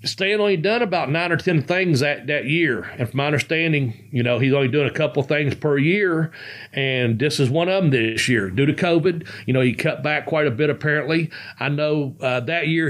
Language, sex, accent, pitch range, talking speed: English, male, American, 120-150 Hz, 235 wpm